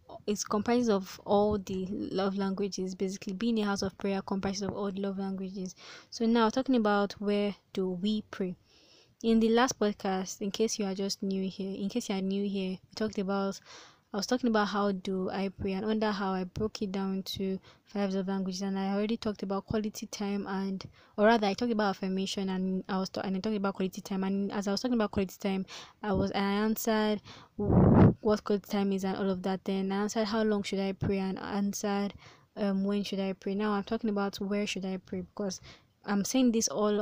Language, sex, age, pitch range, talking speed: English, female, 20-39, 195-215 Hz, 220 wpm